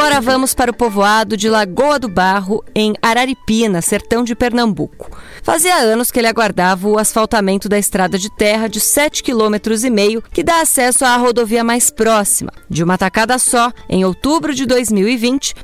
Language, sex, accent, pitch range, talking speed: Portuguese, female, Brazilian, 220-275 Hz, 165 wpm